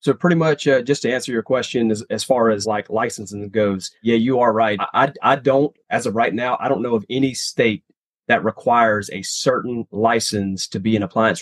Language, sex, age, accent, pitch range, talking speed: English, male, 30-49, American, 105-135 Hz, 225 wpm